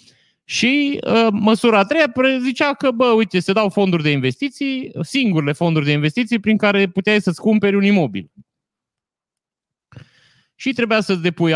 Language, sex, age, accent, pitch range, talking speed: Romanian, male, 30-49, native, 145-200 Hz, 150 wpm